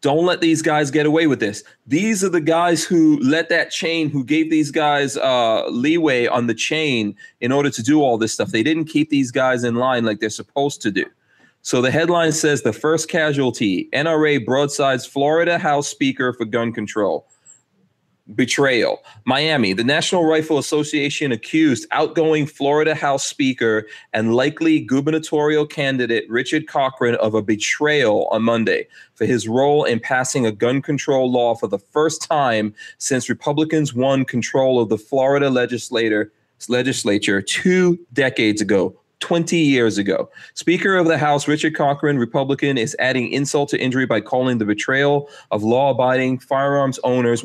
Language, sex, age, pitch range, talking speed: English, male, 30-49, 120-150 Hz, 160 wpm